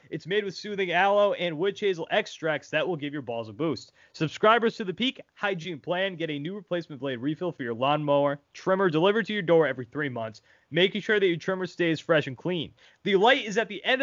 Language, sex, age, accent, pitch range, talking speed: English, male, 20-39, American, 140-195 Hz, 230 wpm